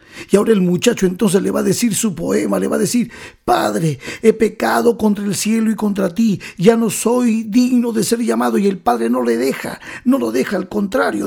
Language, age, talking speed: Spanish, 50-69, 225 wpm